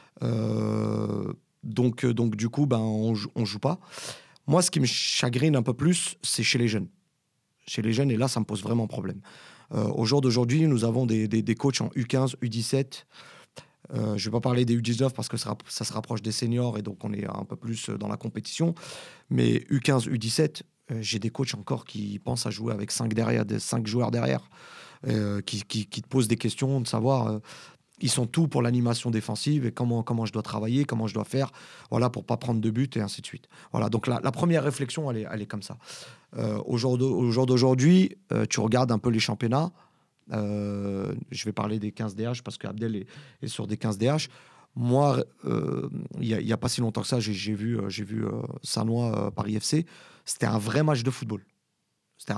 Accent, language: French, French